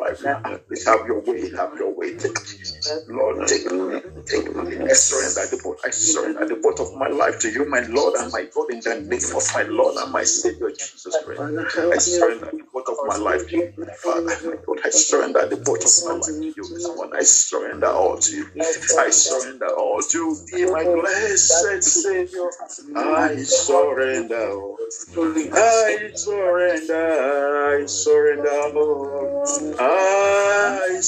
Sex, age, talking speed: male, 50-69, 175 wpm